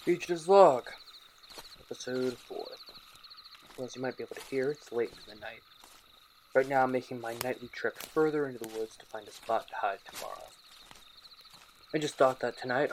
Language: English